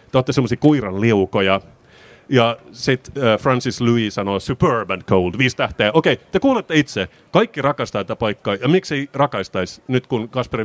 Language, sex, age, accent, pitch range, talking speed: Finnish, male, 30-49, native, 100-135 Hz, 165 wpm